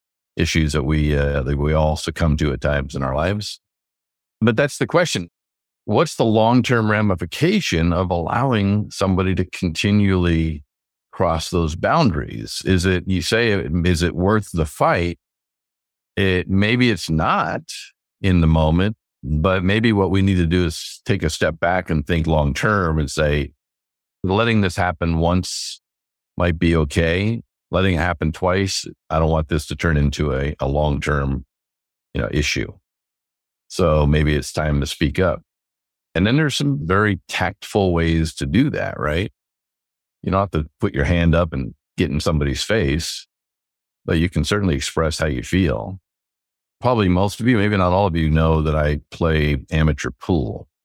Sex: male